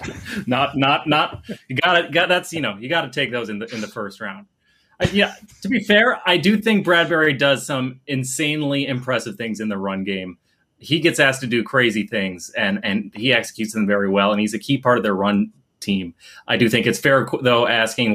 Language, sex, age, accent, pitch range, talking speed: English, male, 30-49, American, 105-130 Hz, 230 wpm